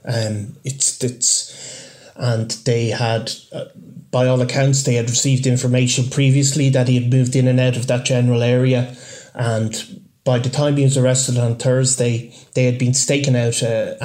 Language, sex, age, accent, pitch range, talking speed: English, male, 30-49, Irish, 120-135 Hz, 175 wpm